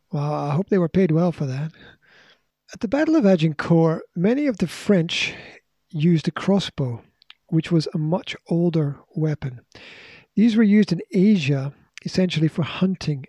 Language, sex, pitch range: English, male, 155-200 Hz